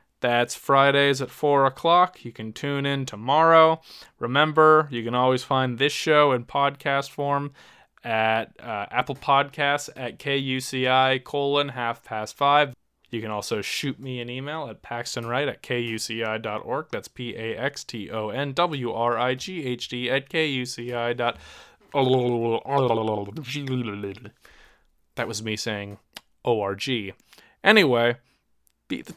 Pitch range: 120-150 Hz